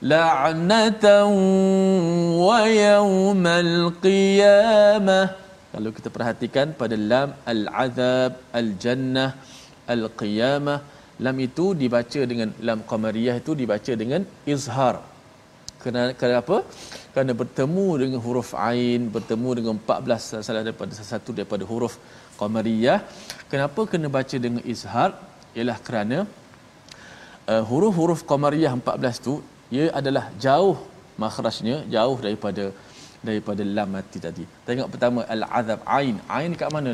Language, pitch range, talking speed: Malayalam, 115-160 Hz, 110 wpm